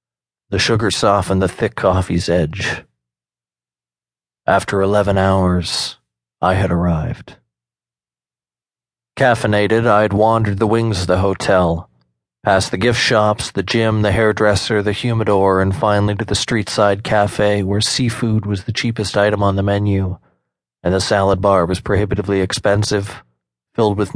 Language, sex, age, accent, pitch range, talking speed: English, male, 40-59, American, 90-110 Hz, 140 wpm